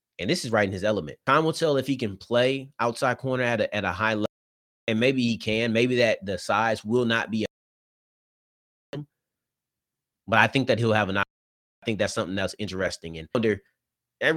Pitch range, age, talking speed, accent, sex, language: 95-125 Hz, 30-49, 210 wpm, American, male, English